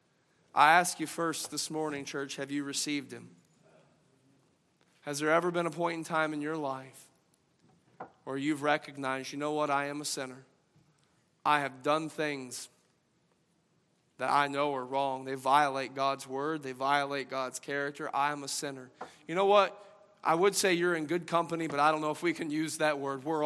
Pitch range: 140-165 Hz